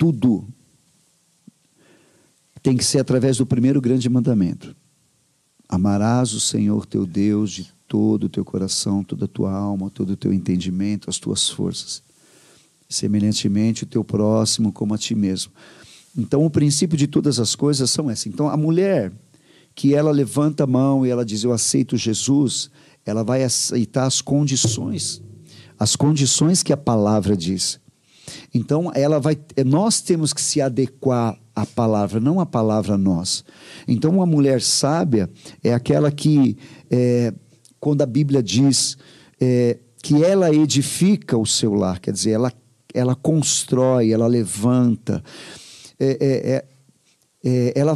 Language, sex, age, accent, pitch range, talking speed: Portuguese, male, 50-69, Brazilian, 115-150 Hz, 135 wpm